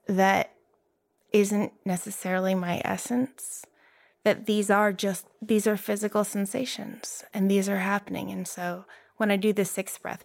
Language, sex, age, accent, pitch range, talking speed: English, female, 20-39, American, 175-205 Hz, 145 wpm